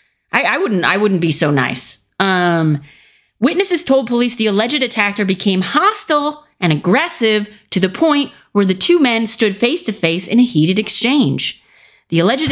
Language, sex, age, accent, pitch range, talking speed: English, female, 30-49, American, 180-265 Hz, 175 wpm